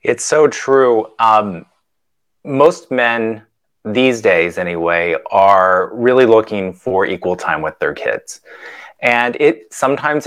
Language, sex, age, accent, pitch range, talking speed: English, male, 30-49, American, 100-130 Hz, 125 wpm